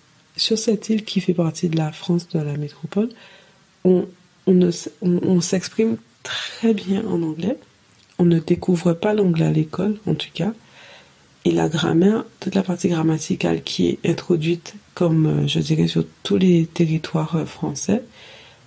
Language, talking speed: English, 160 wpm